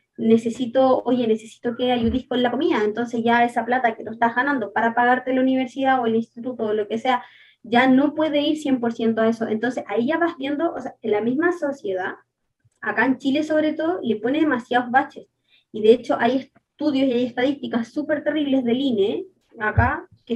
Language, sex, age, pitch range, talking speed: Spanish, female, 20-39, 235-300 Hz, 200 wpm